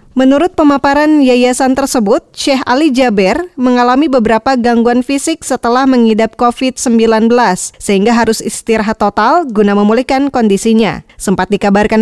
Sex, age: female, 20-39